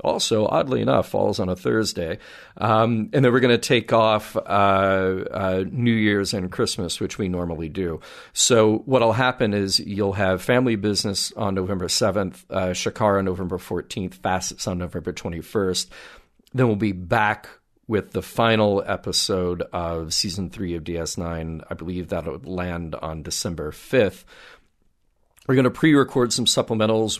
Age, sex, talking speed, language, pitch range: 40-59, male, 155 wpm, English, 95-115 Hz